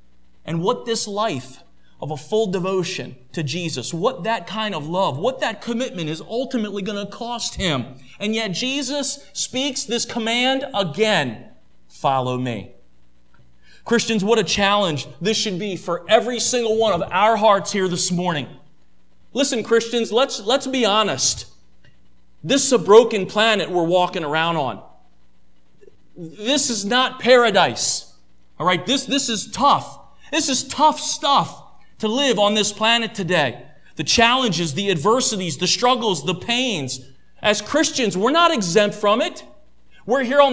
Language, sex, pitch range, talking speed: English, male, 155-250 Hz, 150 wpm